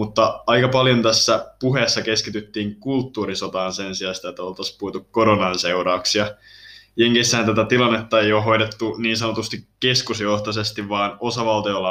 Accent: native